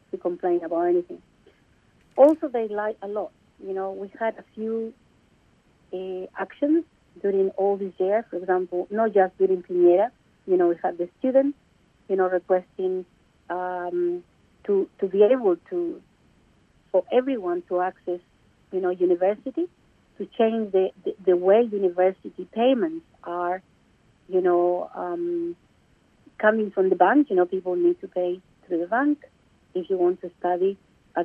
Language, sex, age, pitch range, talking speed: English, female, 50-69, 180-250 Hz, 155 wpm